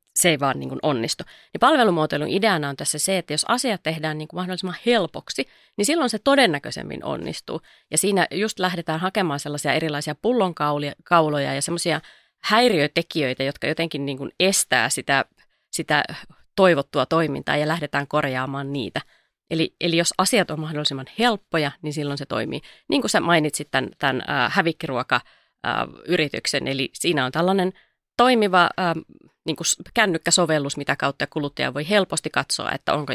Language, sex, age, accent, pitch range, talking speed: Finnish, female, 30-49, native, 145-185 Hz, 155 wpm